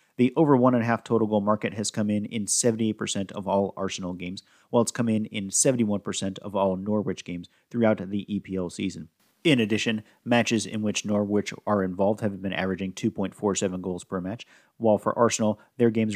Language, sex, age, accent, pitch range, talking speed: English, male, 40-59, American, 100-115 Hz, 180 wpm